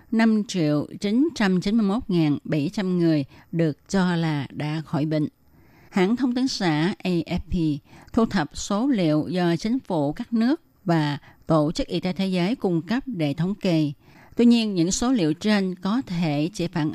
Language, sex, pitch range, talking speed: Vietnamese, female, 160-215 Hz, 155 wpm